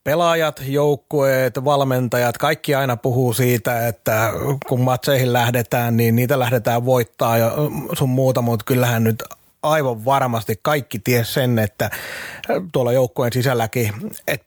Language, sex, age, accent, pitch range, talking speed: Finnish, male, 30-49, native, 115-135 Hz, 125 wpm